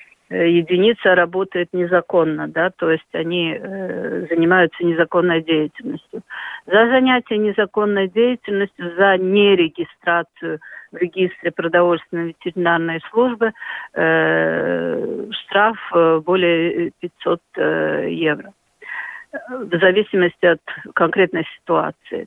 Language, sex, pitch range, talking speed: Russian, female, 170-210 Hz, 90 wpm